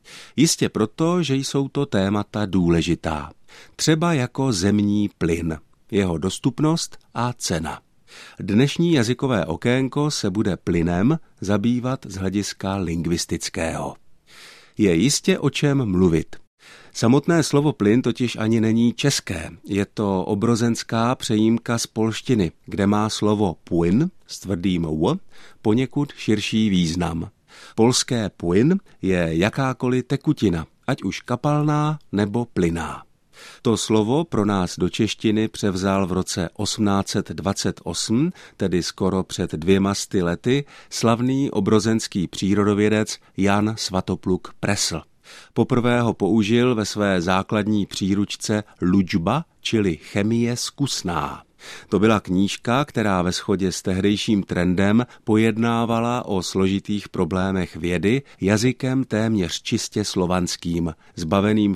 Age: 50-69